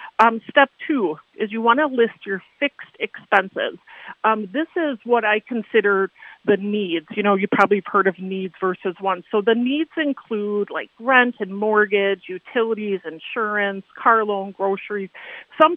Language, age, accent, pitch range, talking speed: English, 40-59, American, 195-250 Hz, 165 wpm